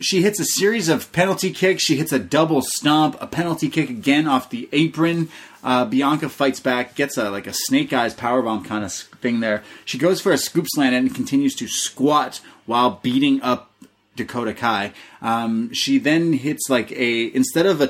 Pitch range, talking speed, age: 115-160 Hz, 190 wpm, 30-49